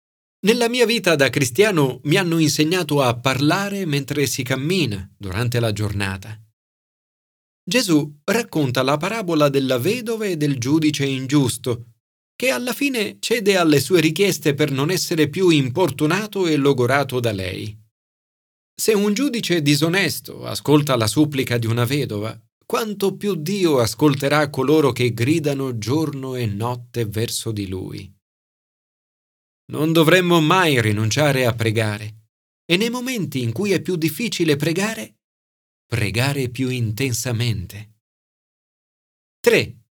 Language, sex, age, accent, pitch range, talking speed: Italian, male, 40-59, native, 120-170 Hz, 125 wpm